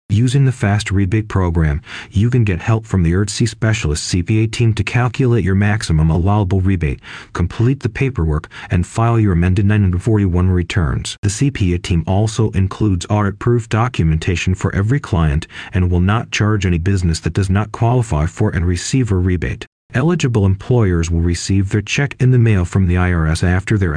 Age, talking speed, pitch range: 40-59, 175 wpm, 90-115 Hz